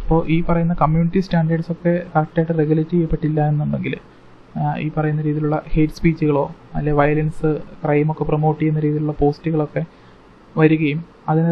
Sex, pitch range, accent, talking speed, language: male, 150-170 Hz, native, 120 wpm, Malayalam